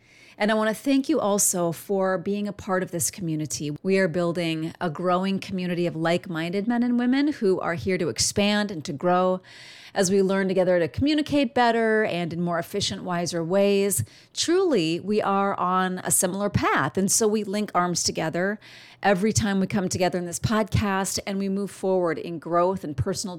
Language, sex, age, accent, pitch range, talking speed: English, female, 30-49, American, 170-230 Hz, 190 wpm